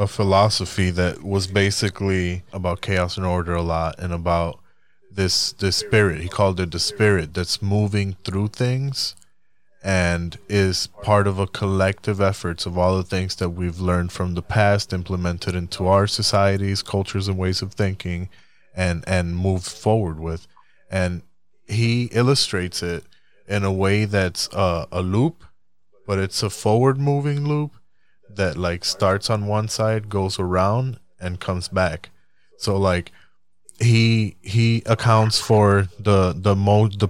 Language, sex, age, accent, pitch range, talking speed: English, male, 20-39, American, 90-105 Hz, 150 wpm